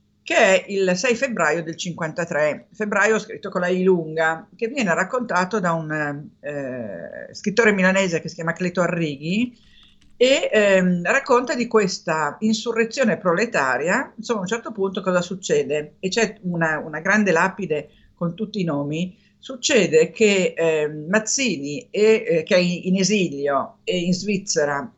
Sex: female